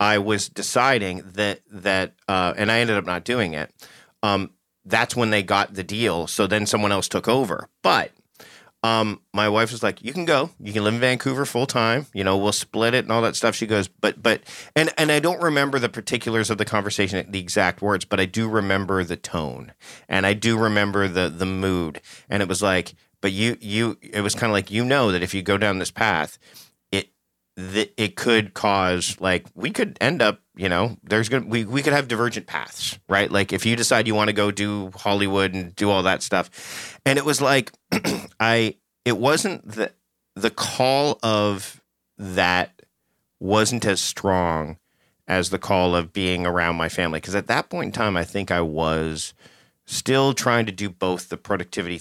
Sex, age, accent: male, 40-59, American